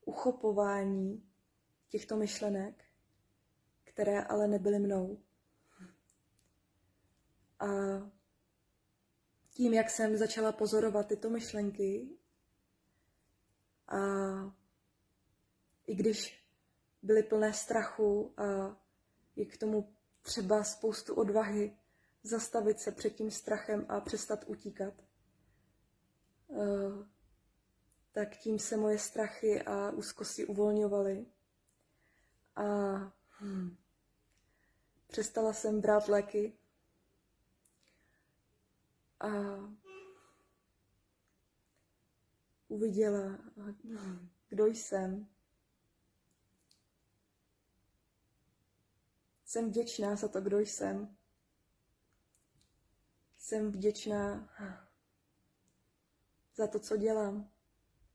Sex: female